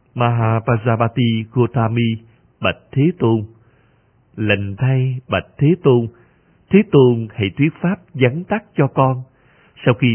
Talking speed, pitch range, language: 125 wpm, 115-145 Hz, Vietnamese